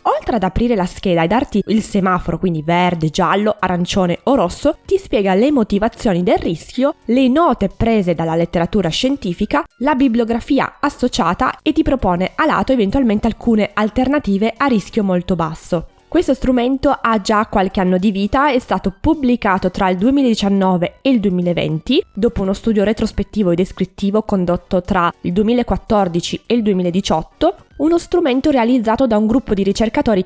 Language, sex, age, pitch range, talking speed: Italian, female, 20-39, 185-255 Hz, 160 wpm